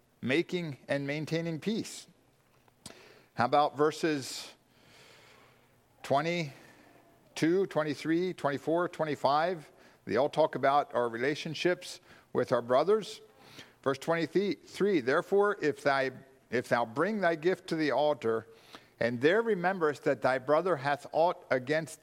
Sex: male